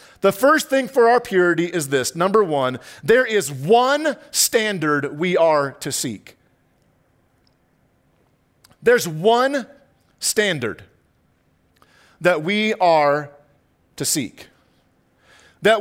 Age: 40-59